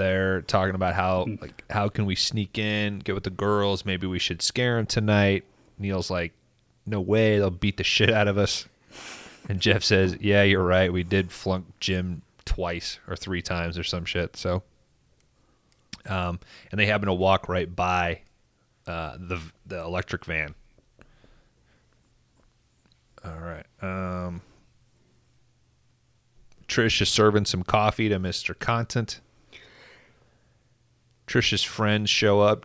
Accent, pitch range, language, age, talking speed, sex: American, 90-105 Hz, English, 30-49, 140 wpm, male